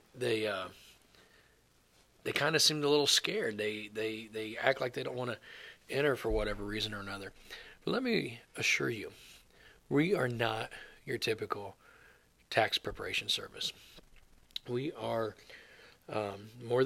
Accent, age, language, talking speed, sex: American, 40-59, English, 145 wpm, male